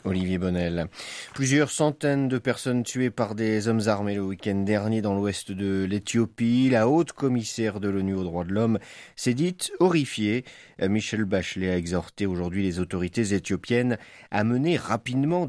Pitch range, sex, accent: 90-115 Hz, male, French